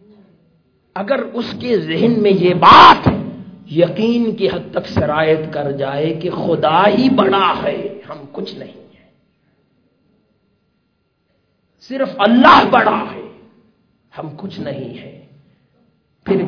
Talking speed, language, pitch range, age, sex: 115 wpm, Urdu, 155-205 Hz, 50-69, male